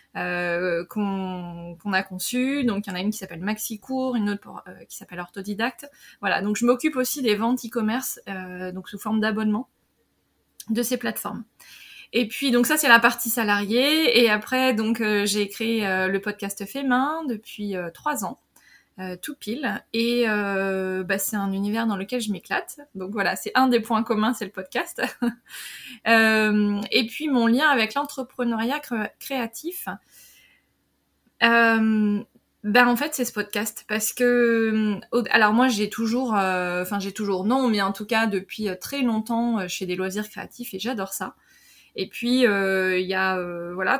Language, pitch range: French, 195-245 Hz